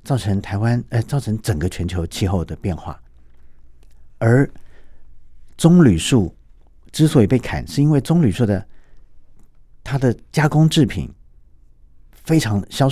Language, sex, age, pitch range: Chinese, male, 50-69, 70-115 Hz